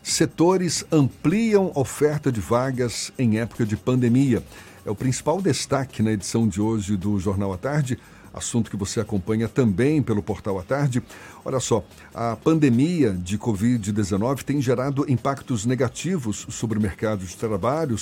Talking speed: 150 wpm